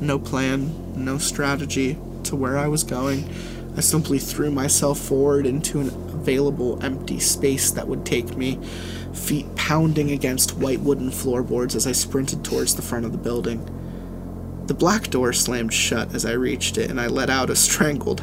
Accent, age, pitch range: American, 20-39, 125-145 Hz